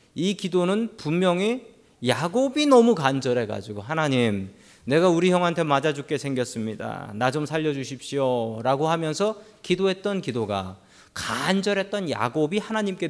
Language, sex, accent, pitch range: Korean, male, native, 125-190 Hz